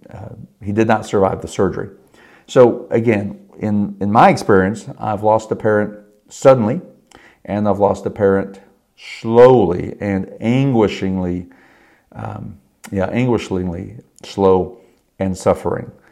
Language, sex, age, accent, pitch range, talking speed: English, male, 50-69, American, 95-110 Hz, 120 wpm